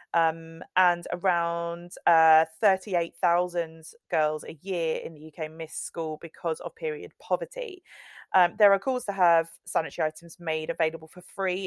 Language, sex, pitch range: English, female, 160-195 Hz